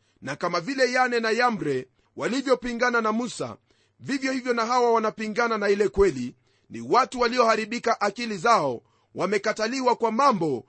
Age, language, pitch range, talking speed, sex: 40-59, Swahili, 195-250 Hz, 140 wpm, male